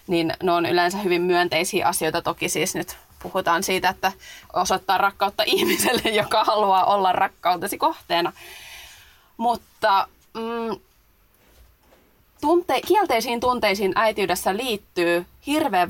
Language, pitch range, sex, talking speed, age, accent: Finnish, 170-210 Hz, female, 110 wpm, 20-39, native